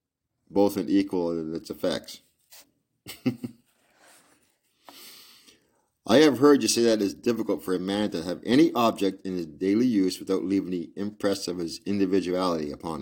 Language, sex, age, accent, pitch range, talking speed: English, male, 50-69, American, 95-115 Hz, 155 wpm